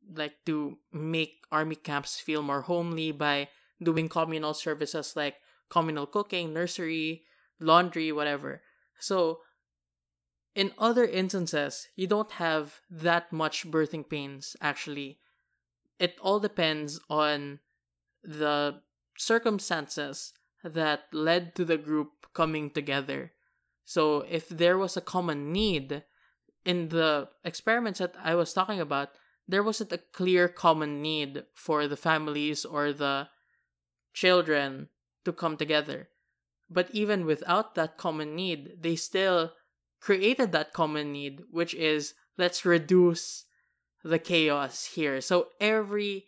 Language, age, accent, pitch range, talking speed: English, 20-39, Filipino, 145-180 Hz, 120 wpm